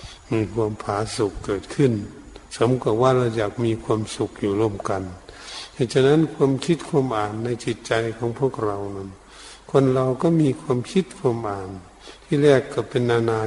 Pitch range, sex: 105-130 Hz, male